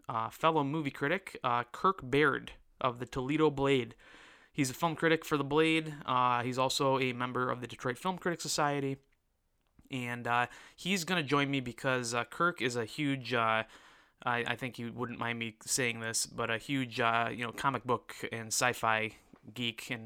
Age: 20-39